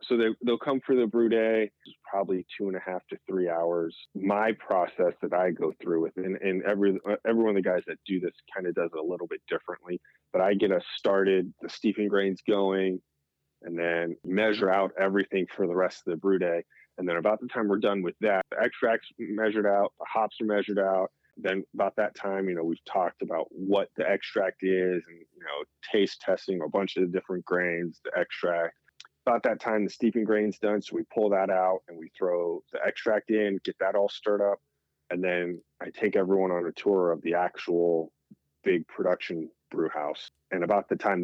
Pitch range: 85-105 Hz